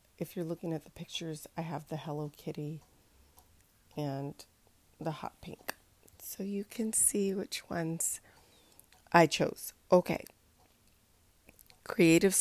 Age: 30-49